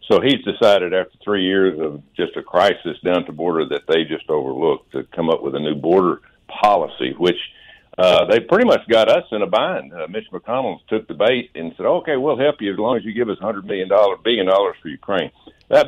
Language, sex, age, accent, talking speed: English, male, 60-79, American, 240 wpm